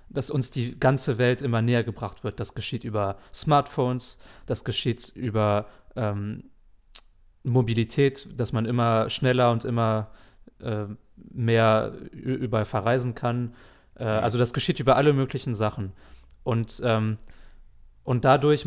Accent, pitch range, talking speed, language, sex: German, 110-130 Hz, 130 wpm, German, male